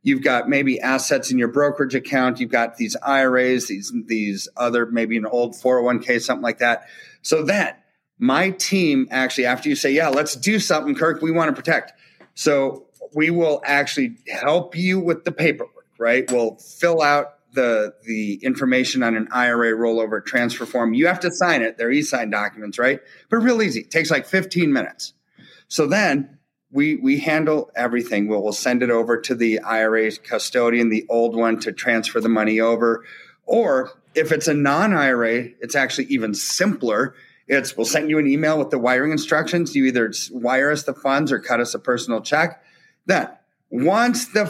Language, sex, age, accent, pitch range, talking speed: English, male, 30-49, American, 115-160 Hz, 185 wpm